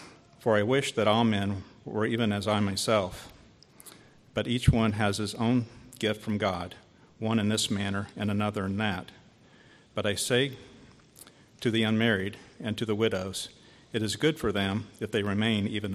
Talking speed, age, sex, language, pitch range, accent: 175 wpm, 50-69, male, English, 100-115 Hz, American